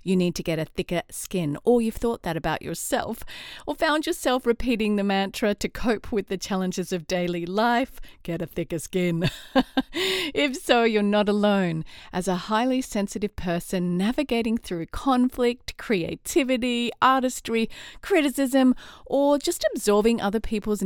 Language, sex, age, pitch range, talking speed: English, female, 40-59, 185-255 Hz, 150 wpm